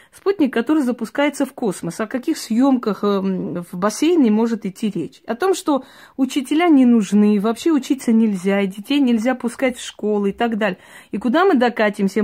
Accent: native